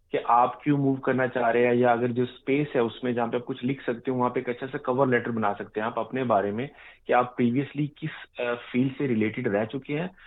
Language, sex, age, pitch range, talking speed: Urdu, male, 30-49, 120-140 Hz, 270 wpm